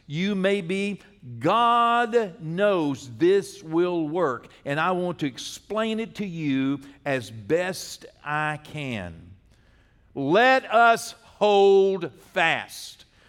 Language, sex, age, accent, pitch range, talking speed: English, male, 50-69, American, 150-240 Hz, 110 wpm